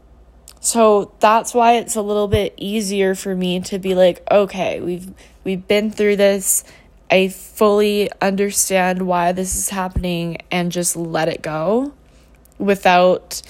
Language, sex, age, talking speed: English, female, 10-29, 140 wpm